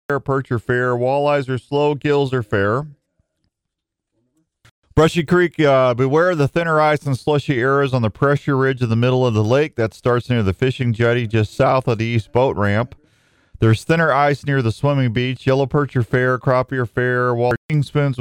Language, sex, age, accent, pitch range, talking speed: English, male, 40-59, American, 110-135 Hz, 190 wpm